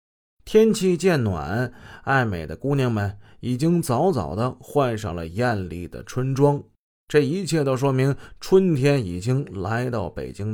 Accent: native